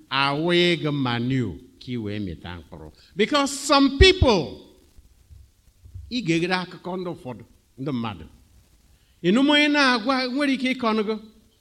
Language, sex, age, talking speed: English, male, 60-79, 120 wpm